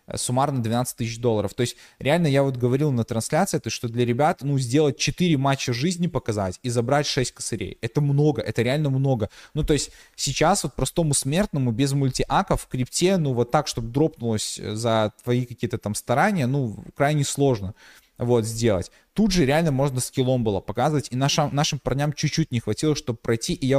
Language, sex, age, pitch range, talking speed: Russian, male, 20-39, 120-150 Hz, 190 wpm